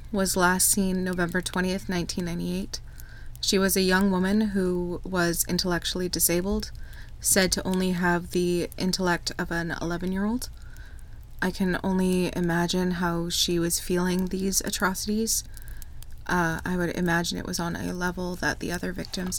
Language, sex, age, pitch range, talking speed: English, female, 20-39, 165-195 Hz, 145 wpm